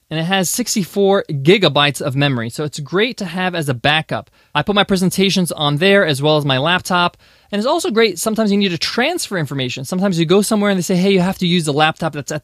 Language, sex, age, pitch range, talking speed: English, male, 20-39, 155-205 Hz, 250 wpm